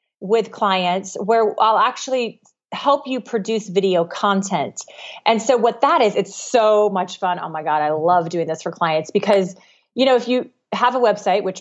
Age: 30-49